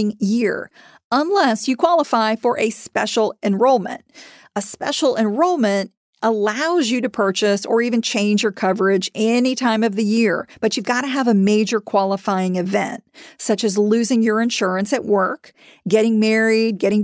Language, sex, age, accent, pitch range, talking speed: English, female, 40-59, American, 200-255 Hz, 155 wpm